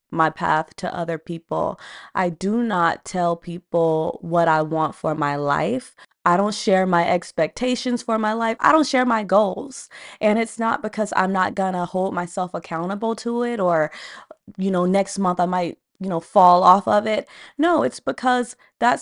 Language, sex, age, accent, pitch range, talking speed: English, female, 20-39, American, 170-225 Hz, 185 wpm